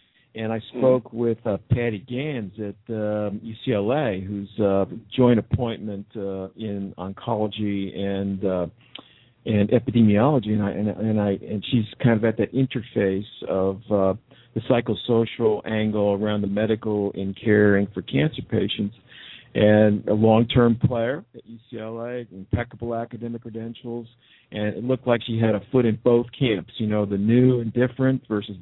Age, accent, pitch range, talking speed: 50-69, American, 105-125 Hz, 155 wpm